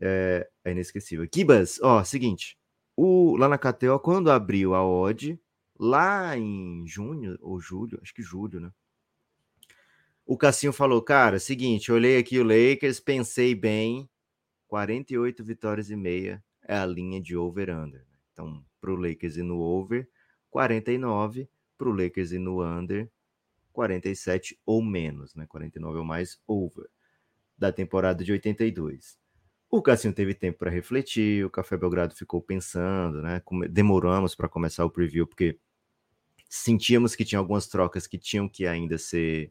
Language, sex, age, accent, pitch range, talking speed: Portuguese, male, 20-39, Brazilian, 85-115 Hz, 150 wpm